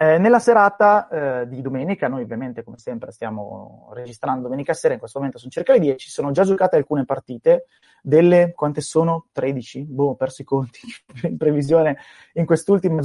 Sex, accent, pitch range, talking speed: male, native, 130-175 Hz, 180 wpm